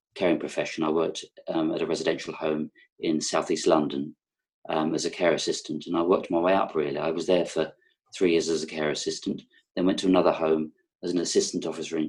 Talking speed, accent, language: 220 wpm, British, English